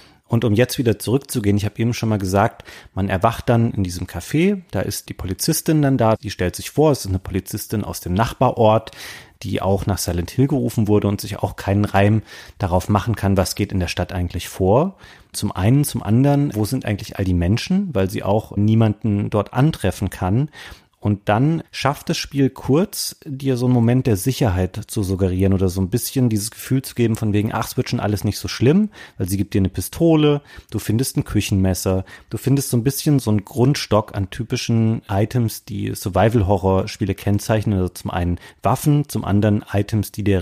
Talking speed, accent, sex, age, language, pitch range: 205 wpm, German, male, 30-49, German, 100-130 Hz